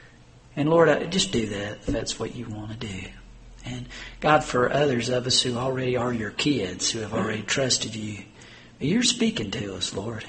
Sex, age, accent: male, 50-69, American